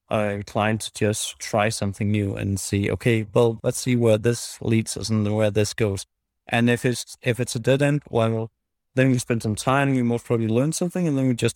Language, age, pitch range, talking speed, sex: English, 30-49, 110-130 Hz, 230 wpm, male